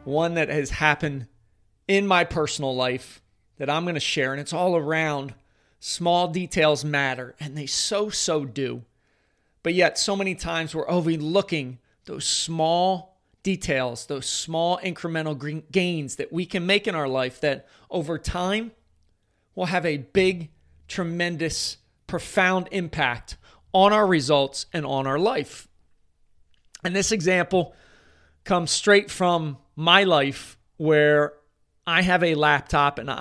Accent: American